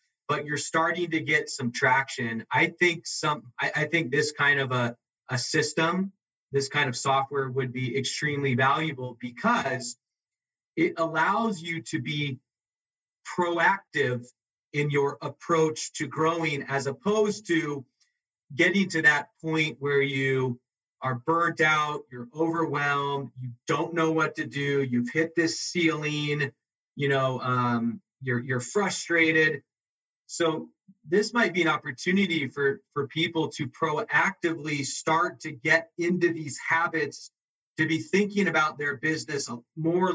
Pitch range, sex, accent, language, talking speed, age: 130-160 Hz, male, American, English, 140 wpm, 40-59